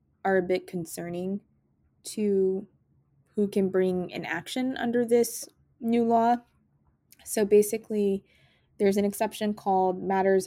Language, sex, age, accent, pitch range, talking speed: English, female, 20-39, American, 170-205 Hz, 120 wpm